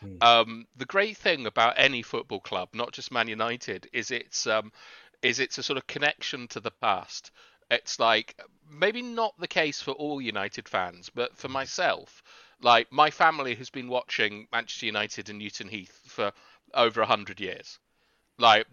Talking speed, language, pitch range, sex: 170 wpm, English, 110-135 Hz, male